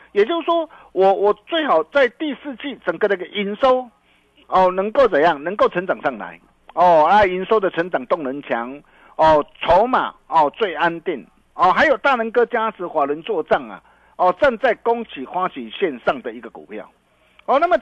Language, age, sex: Chinese, 50-69, male